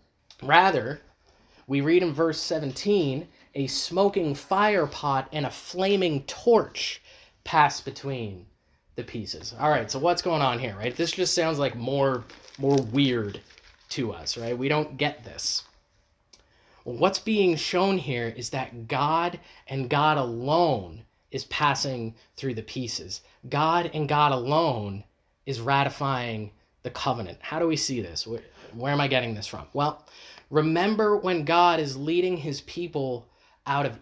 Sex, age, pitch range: male, 20-39, 130-170 Hz